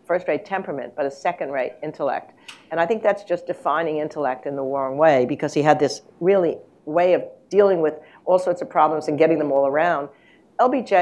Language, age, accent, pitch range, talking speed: English, 60-79, American, 145-170 Hz, 195 wpm